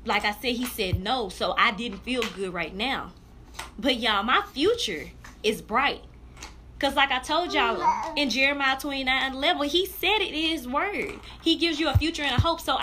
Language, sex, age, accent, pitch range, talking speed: English, female, 20-39, American, 235-330 Hz, 200 wpm